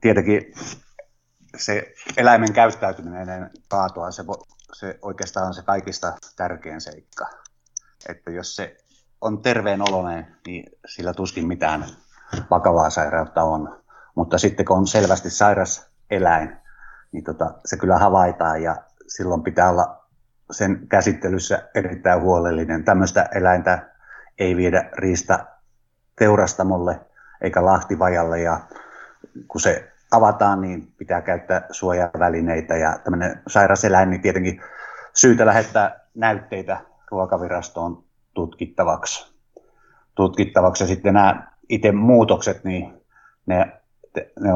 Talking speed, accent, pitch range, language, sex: 105 wpm, native, 85-95 Hz, Finnish, male